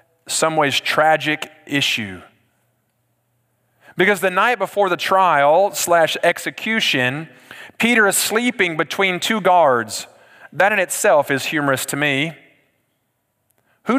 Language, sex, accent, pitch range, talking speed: English, male, American, 120-165 Hz, 110 wpm